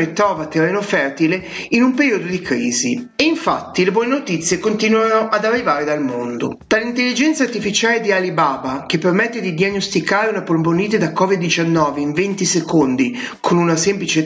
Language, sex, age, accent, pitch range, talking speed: Italian, male, 30-49, native, 160-220 Hz, 150 wpm